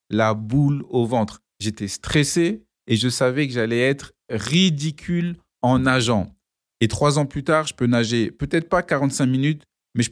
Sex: male